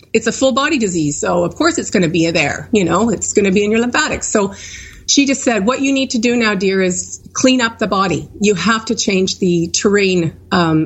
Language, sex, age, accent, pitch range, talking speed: English, female, 40-59, American, 185-240 Hz, 250 wpm